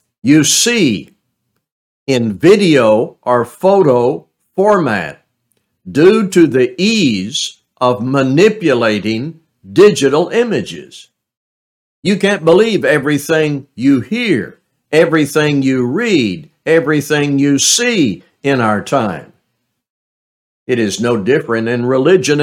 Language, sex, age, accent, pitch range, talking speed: English, male, 60-79, American, 125-170 Hz, 95 wpm